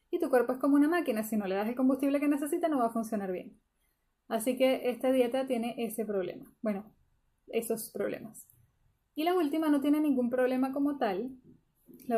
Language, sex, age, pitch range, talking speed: Spanish, female, 10-29, 230-280 Hz, 190 wpm